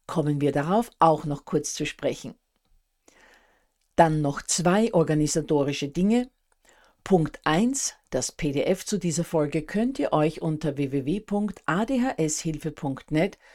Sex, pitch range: female, 150-185 Hz